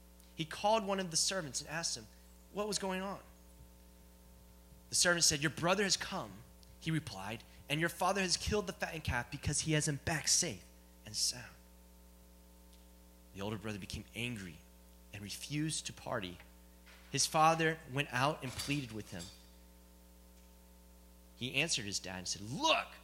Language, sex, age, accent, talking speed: English, male, 30-49, American, 160 wpm